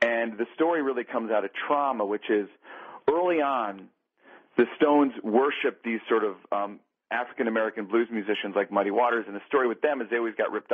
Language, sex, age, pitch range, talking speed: English, male, 40-59, 110-135 Hz, 195 wpm